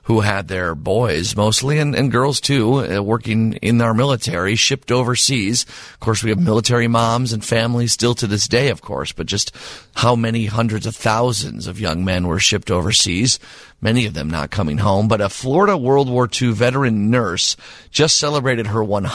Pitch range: 100-125 Hz